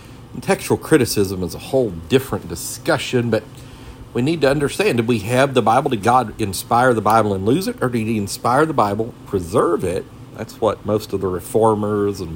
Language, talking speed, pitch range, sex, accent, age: English, 200 wpm, 95-125 Hz, male, American, 50-69